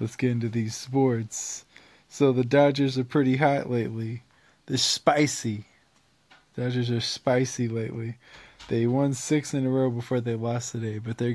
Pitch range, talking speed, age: 115-130 Hz, 165 wpm, 20-39